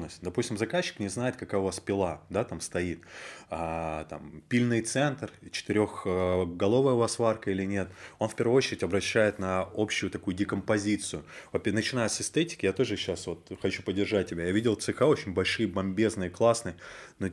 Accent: native